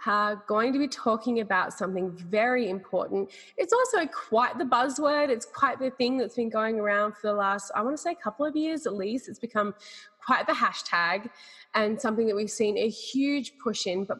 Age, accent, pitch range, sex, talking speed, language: 20-39, Australian, 190-245 Hz, female, 210 wpm, English